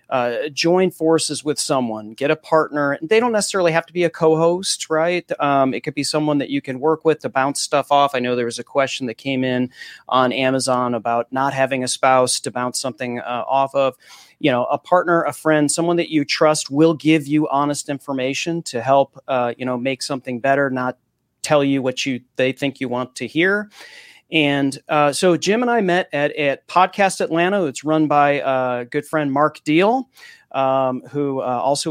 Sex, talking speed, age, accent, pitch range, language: male, 205 wpm, 30-49, American, 130-160 Hz, English